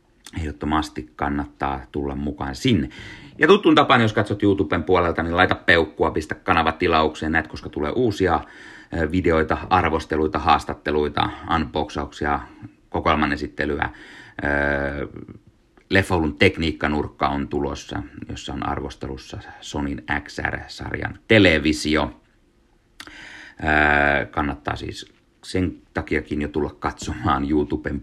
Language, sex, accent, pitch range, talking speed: Finnish, male, native, 70-85 Hz, 100 wpm